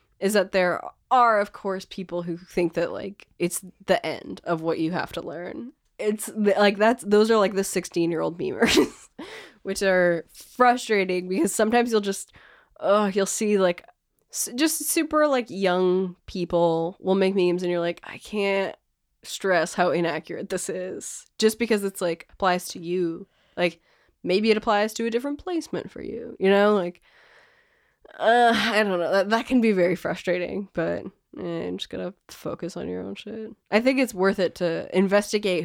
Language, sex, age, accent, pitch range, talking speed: English, female, 20-39, American, 170-215 Hz, 180 wpm